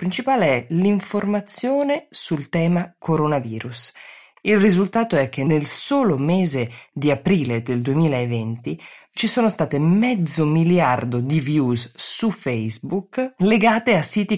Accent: native